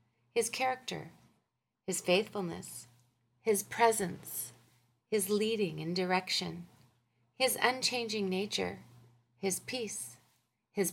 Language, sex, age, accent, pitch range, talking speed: English, female, 40-59, American, 130-205 Hz, 90 wpm